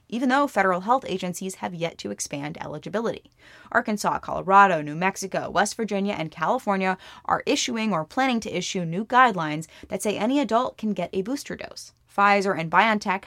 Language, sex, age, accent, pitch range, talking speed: English, female, 20-39, American, 170-230 Hz, 170 wpm